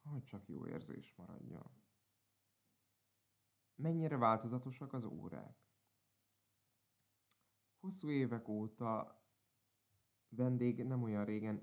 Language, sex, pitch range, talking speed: Hungarian, male, 105-125 Hz, 85 wpm